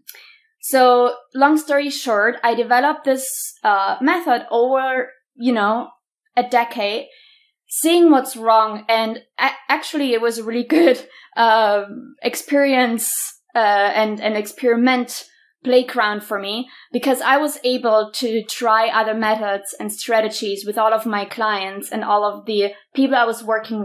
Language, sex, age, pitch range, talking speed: English, female, 20-39, 215-265 Hz, 145 wpm